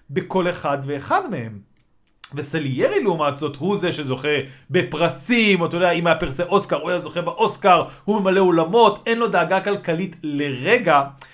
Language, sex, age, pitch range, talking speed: Hebrew, male, 40-59, 165-210 Hz, 160 wpm